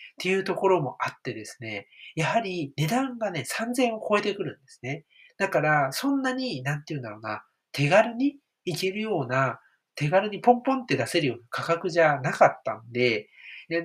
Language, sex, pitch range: Japanese, male, 130-200 Hz